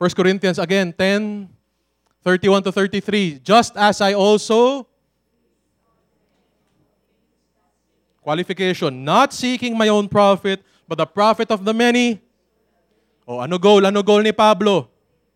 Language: English